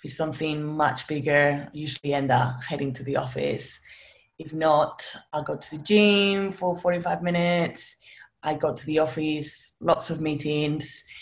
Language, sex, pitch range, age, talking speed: English, female, 145-170 Hz, 20-39, 165 wpm